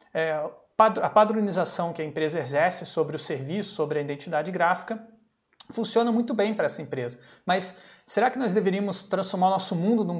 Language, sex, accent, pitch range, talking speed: Portuguese, male, Brazilian, 155-215 Hz, 175 wpm